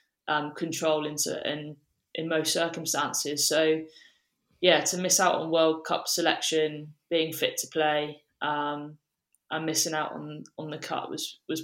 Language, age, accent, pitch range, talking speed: English, 20-39, British, 150-160 Hz, 155 wpm